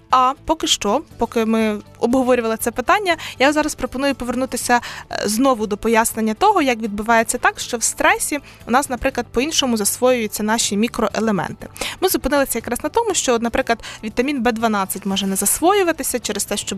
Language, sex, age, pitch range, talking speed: Ukrainian, female, 20-39, 220-290 Hz, 160 wpm